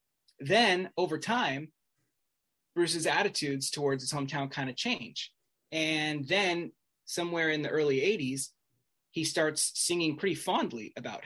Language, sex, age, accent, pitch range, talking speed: English, male, 20-39, American, 135-170 Hz, 130 wpm